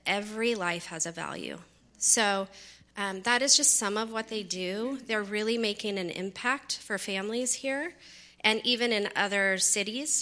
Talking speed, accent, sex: 165 wpm, American, female